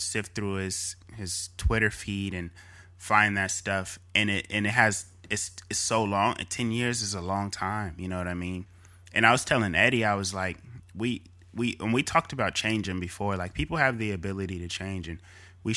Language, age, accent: English, 20-39, American